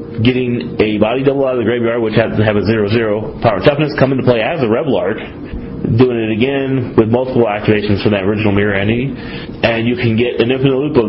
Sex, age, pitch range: male, 30-49, 105-125 Hz